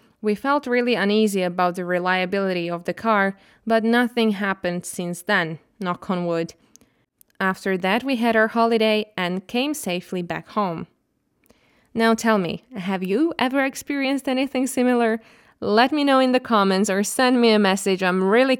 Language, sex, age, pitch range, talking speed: Slovak, female, 20-39, 190-245 Hz, 165 wpm